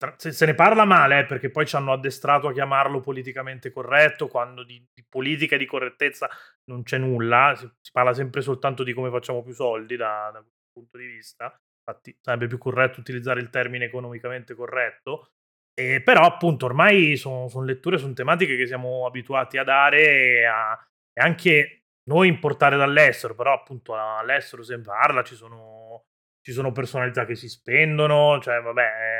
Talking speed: 175 wpm